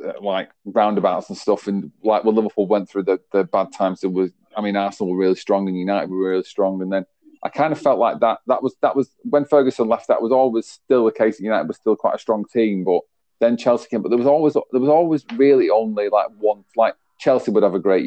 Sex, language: male, English